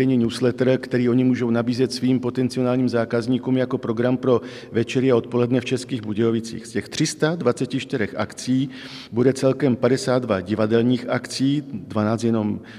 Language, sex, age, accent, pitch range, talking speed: Czech, male, 50-69, native, 115-125 Hz, 125 wpm